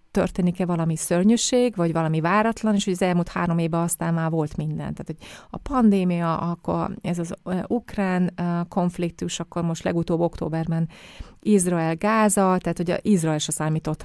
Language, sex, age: Hungarian, female, 30-49